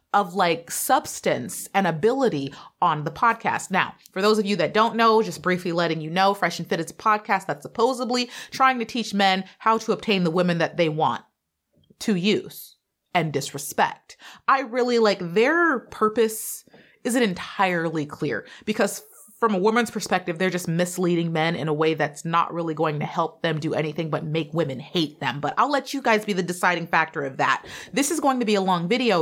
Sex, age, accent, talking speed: female, 30-49, American, 200 wpm